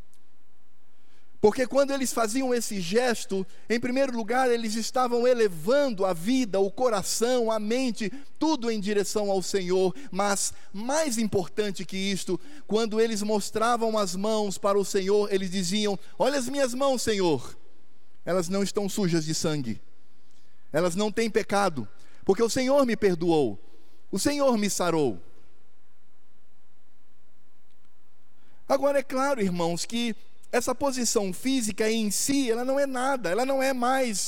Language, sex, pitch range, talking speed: Portuguese, male, 200-255 Hz, 140 wpm